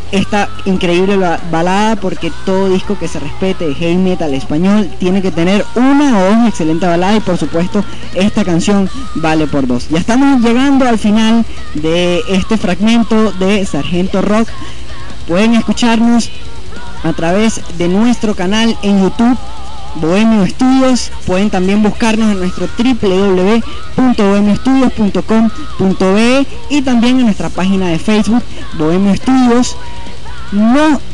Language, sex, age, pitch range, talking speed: Spanish, female, 10-29, 180-225 Hz, 130 wpm